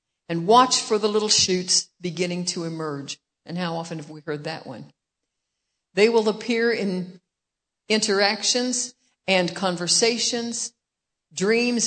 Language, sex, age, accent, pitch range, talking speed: English, female, 60-79, American, 170-215 Hz, 125 wpm